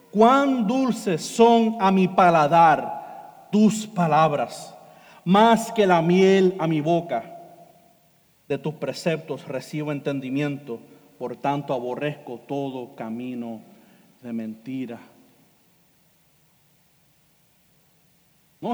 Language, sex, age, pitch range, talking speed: Spanish, male, 50-69, 155-225 Hz, 90 wpm